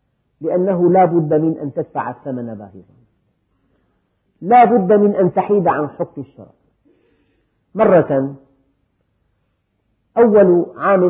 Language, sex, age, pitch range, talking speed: Arabic, female, 50-69, 110-175 Hz, 105 wpm